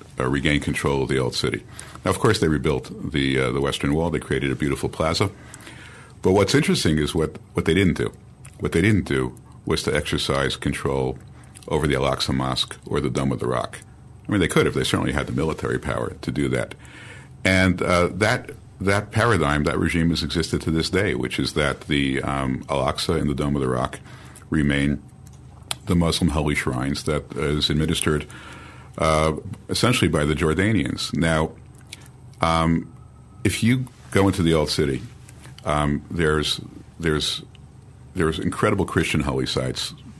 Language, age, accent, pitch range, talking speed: English, 50-69, American, 70-95 Hz, 175 wpm